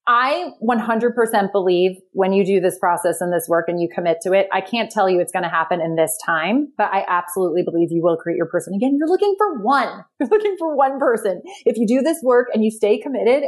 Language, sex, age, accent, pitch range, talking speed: English, female, 30-49, American, 185-245 Hz, 245 wpm